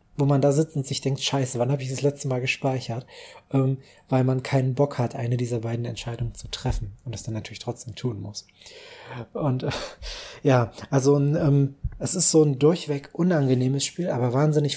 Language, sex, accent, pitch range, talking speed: German, male, German, 130-145 Hz, 195 wpm